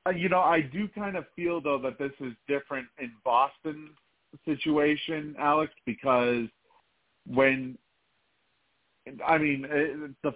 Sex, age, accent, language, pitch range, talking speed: male, 40-59, American, English, 125-155 Hz, 125 wpm